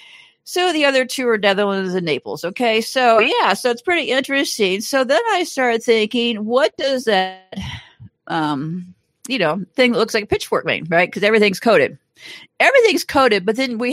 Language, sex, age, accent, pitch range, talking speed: English, female, 50-69, American, 185-250 Hz, 180 wpm